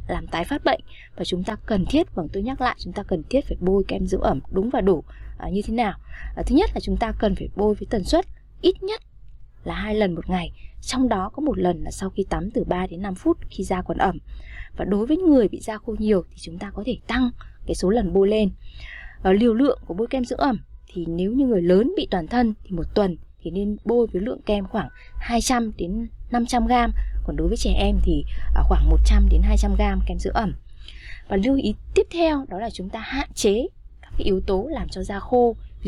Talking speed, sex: 240 wpm, female